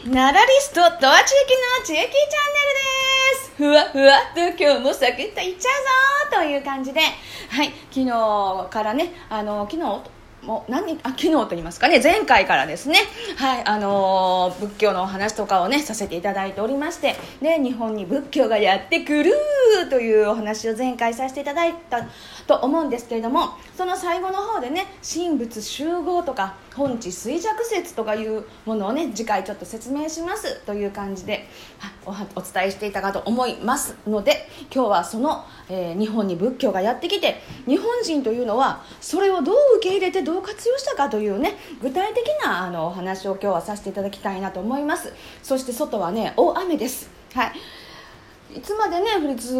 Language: Japanese